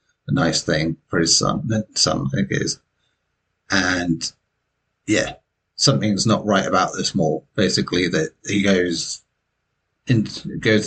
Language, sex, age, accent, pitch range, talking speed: English, male, 30-49, British, 95-115 Hz, 140 wpm